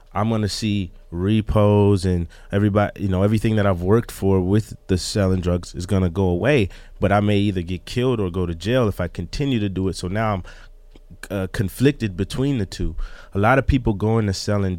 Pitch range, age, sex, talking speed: 95-115 Hz, 30-49, male, 210 wpm